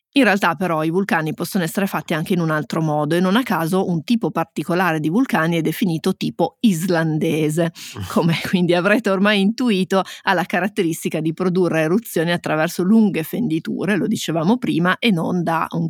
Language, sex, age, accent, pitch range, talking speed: Italian, female, 30-49, native, 165-195 Hz, 175 wpm